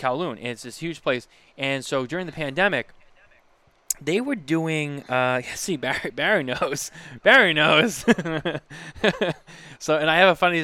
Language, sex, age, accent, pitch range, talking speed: English, male, 20-39, American, 115-135 Hz, 145 wpm